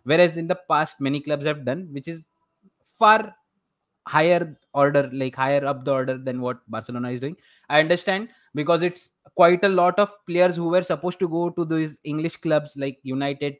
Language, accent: English, Indian